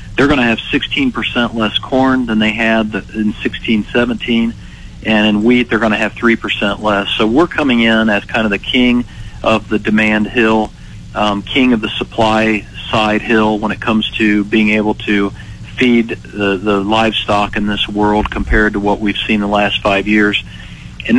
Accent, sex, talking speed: American, male, 185 wpm